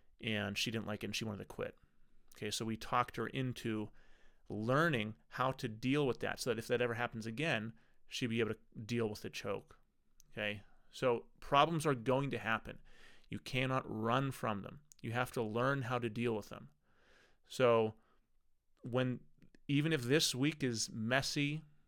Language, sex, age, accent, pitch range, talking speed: English, male, 30-49, American, 110-130 Hz, 180 wpm